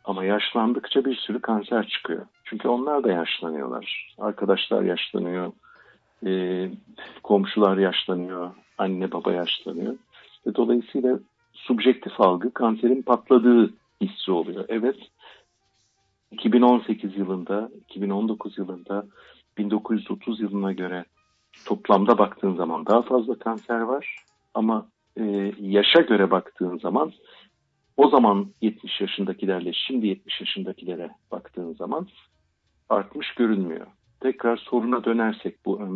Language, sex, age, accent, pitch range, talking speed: English, male, 50-69, Turkish, 95-115 Hz, 105 wpm